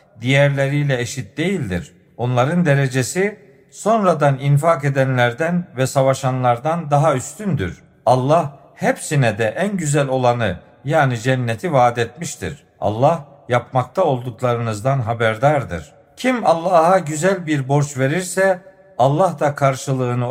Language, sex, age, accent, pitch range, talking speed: Turkish, male, 50-69, native, 130-175 Hz, 105 wpm